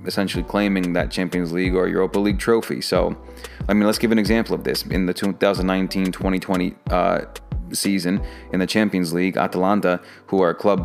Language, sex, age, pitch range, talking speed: English, male, 30-49, 90-100 Hz, 170 wpm